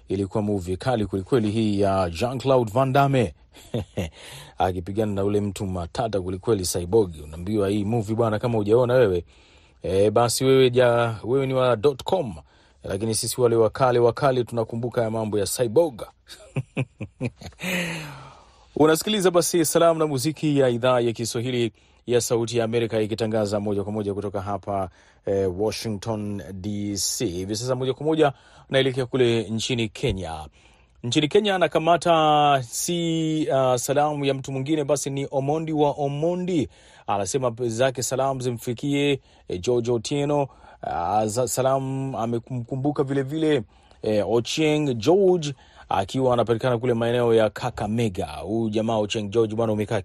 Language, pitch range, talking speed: Swahili, 105-135 Hz, 135 wpm